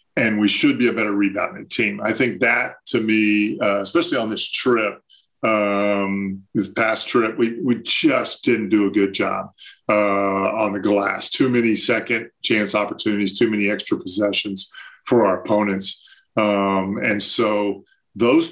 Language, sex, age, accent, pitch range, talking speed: English, male, 40-59, American, 100-130 Hz, 160 wpm